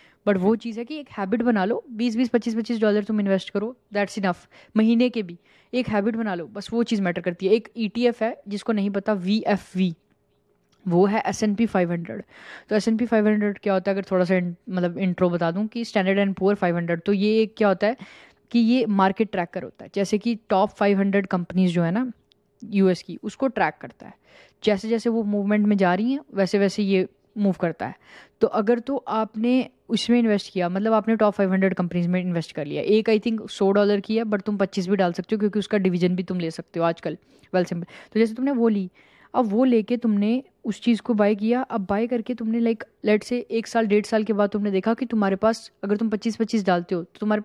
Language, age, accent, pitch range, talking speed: Hindi, 10-29, native, 195-230 Hz, 230 wpm